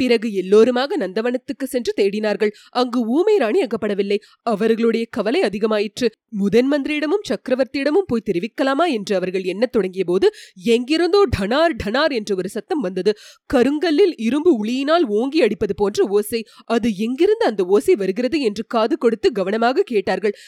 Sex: female